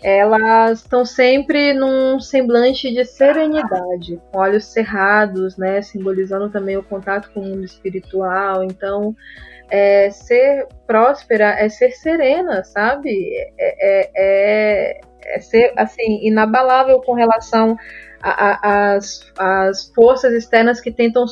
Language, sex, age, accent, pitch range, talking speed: Portuguese, female, 20-39, Brazilian, 200-250 Hz, 120 wpm